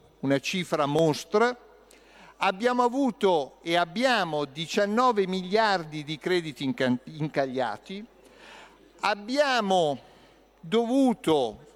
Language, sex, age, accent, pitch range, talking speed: Italian, male, 50-69, native, 170-235 Hz, 75 wpm